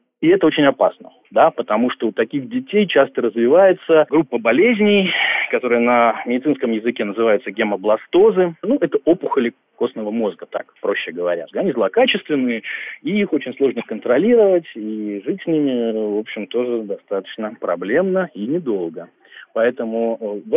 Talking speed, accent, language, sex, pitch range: 140 wpm, native, Russian, male, 115-190 Hz